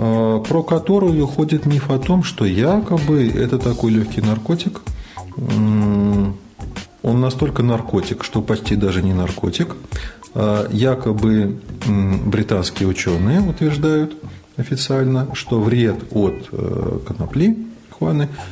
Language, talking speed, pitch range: Russian, 95 wpm, 100-140 Hz